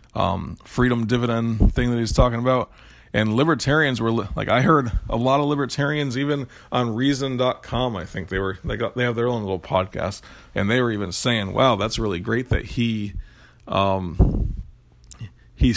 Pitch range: 100-125 Hz